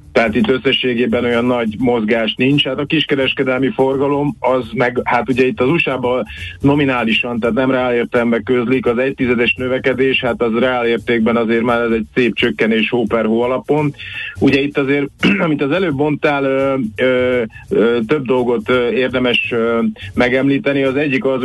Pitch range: 120-135 Hz